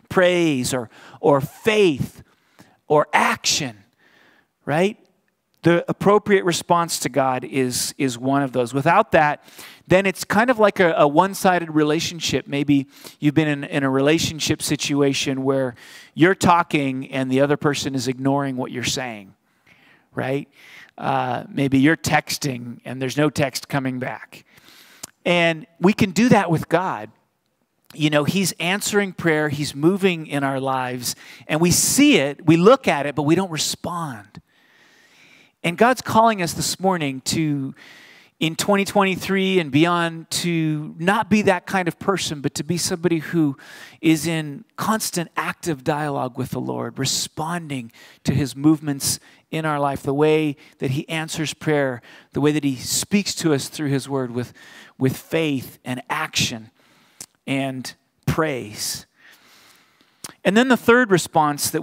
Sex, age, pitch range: male, 40-59, 135-175 Hz